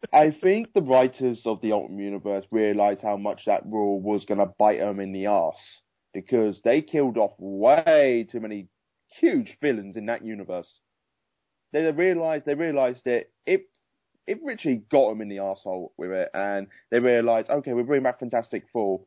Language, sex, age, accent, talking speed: English, male, 20-39, British, 180 wpm